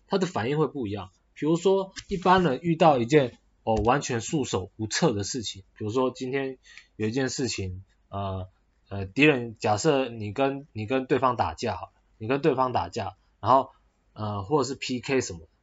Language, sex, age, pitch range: Chinese, male, 20-39, 105-145 Hz